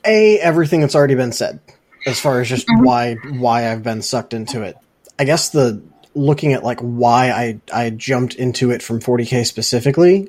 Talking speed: 190 wpm